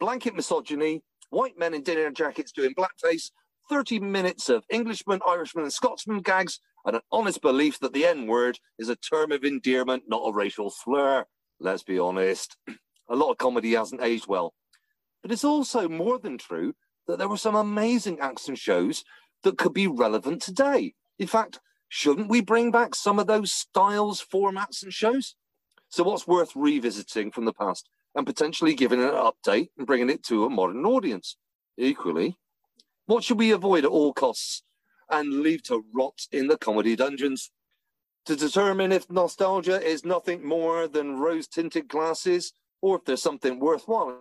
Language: English